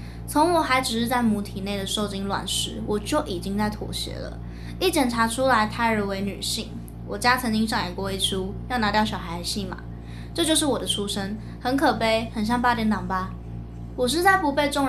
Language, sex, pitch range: Chinese, female, 185-255 Hz